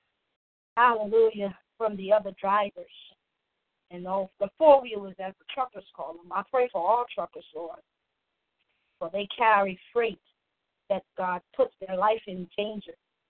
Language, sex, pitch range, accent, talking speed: English, female, 185-220 Hz, American, 145 wpm